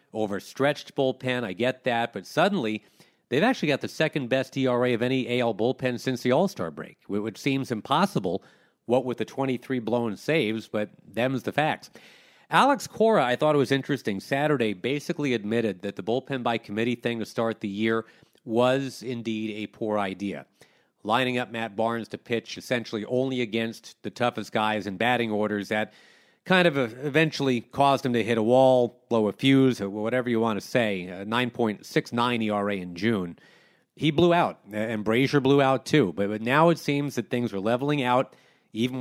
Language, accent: English, American